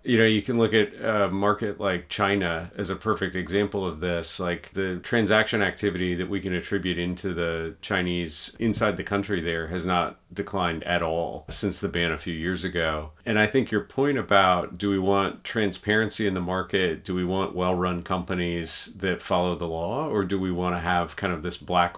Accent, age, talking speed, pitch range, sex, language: American, 40-59, 200 wpm, 85-100 Hz, male, English